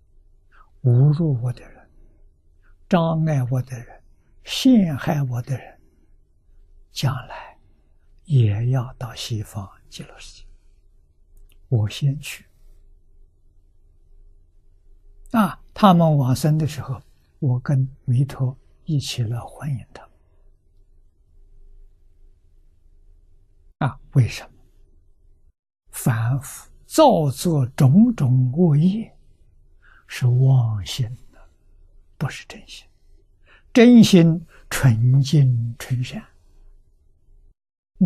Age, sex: 60-79, male